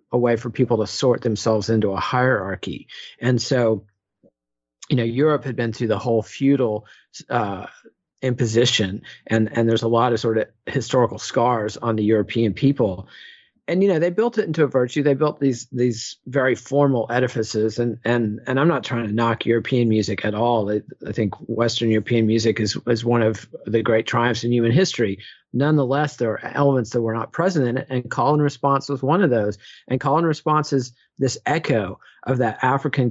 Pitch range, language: 110-135 Hz, English